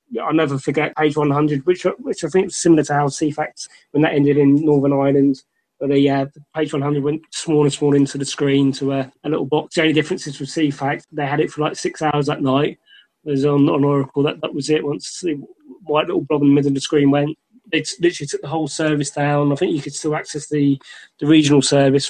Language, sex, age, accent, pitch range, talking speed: English, male, 20-39, British, 140-155 Hz, 250 wpm